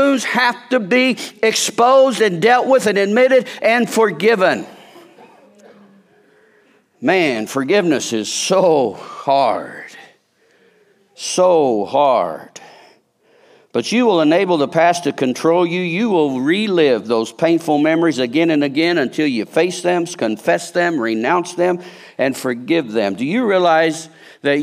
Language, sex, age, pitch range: English, male, 50-69, 140-200 Hz